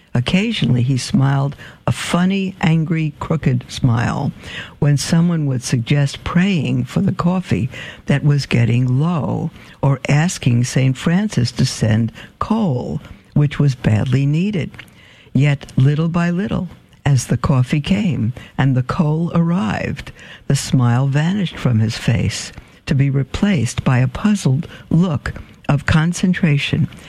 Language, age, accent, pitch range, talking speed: English, 60-79, American, 125-170 Hz, 130 wpm